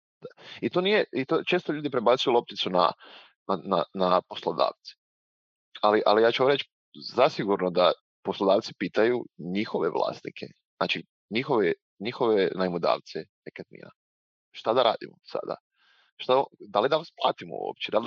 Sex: male